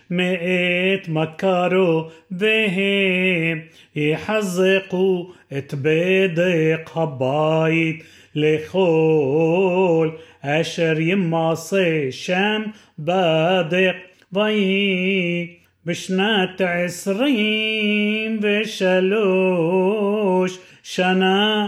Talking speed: 45 wpm